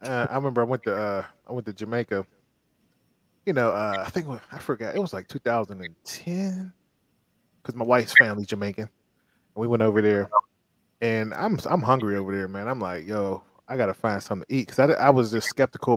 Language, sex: English, male